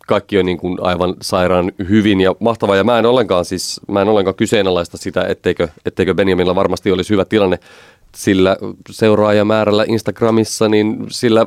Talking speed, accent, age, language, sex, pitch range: 155 wpm, native, 30-49, Finnish, male, 90-110 Hz